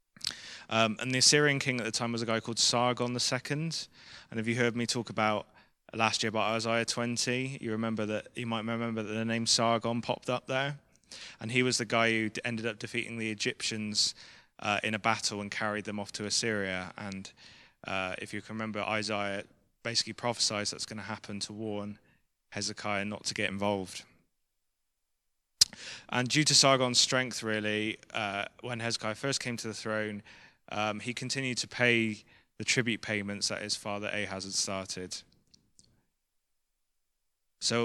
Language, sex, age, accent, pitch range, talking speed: English, male, 20-39, British, 105-120 Hz, 175 wpm